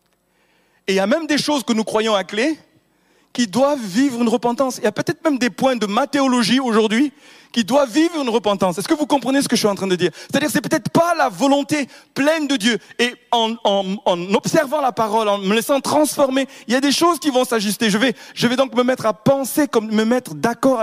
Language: French